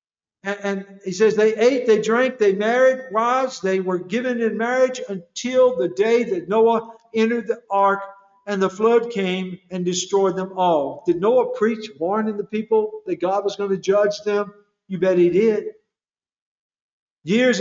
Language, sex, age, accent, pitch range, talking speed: English, male, 60-79, American, 200-270 Hz, 165 wpm